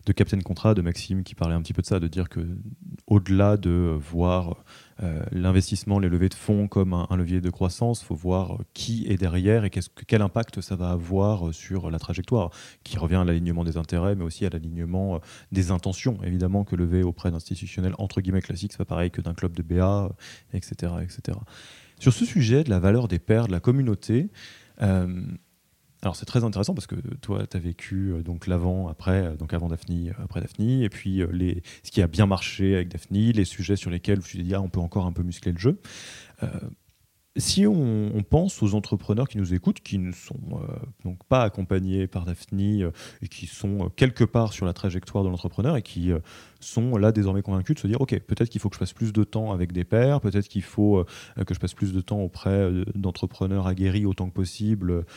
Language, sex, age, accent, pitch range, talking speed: French, male, 20-39, French, 90-110 Hz, 220 wpm